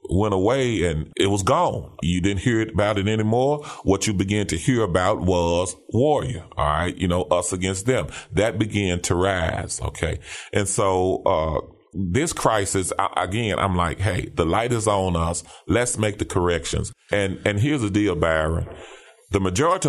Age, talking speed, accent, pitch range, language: 30-49, 175 wpm, American, 90-115 Hz, English